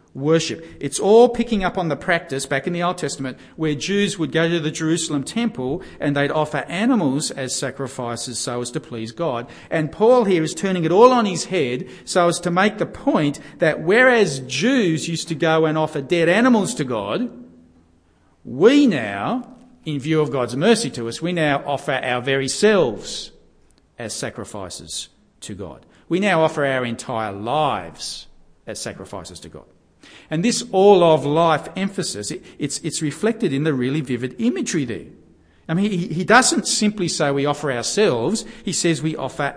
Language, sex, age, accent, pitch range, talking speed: English, male, 50-69, Australian, 135-195 Hz, 175 wpm